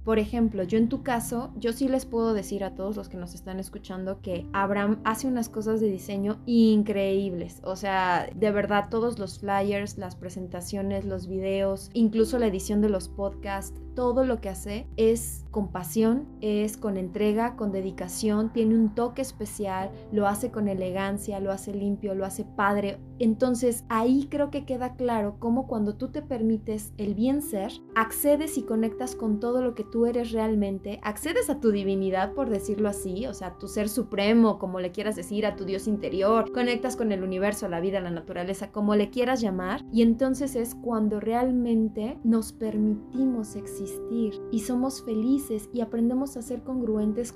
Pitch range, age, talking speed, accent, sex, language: 195-235 Hz, 20-39, 180 wpm, Mexican, female, English